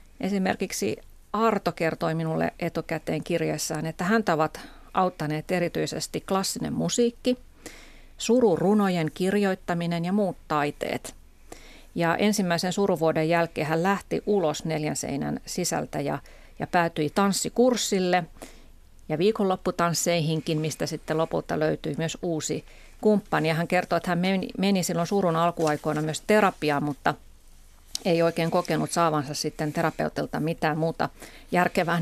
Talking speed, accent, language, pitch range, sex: 120 wpm, native, Finnish, 155-185 Hz, female